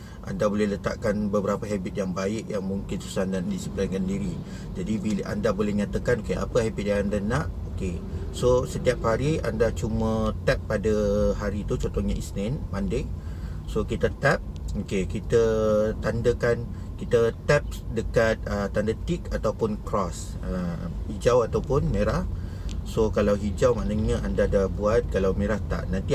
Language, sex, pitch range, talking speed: Malay, male, 95-110 Hz, 150 wpm